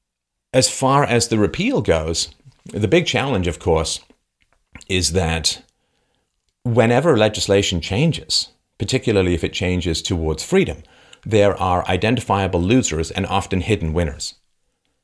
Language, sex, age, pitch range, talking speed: English, male, 40-59, 80-110 Hz, 120 wpm